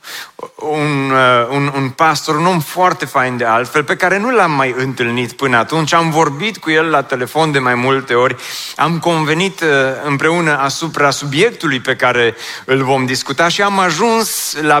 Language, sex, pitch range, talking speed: Romanian, male, 125-165 Hz, 170 wpm